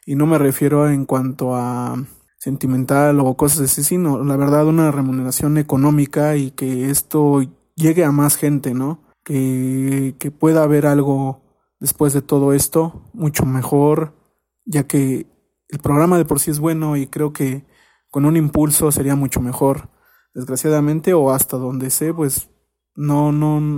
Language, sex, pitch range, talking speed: Spanish, male, 135-150 Hz, 155 wpm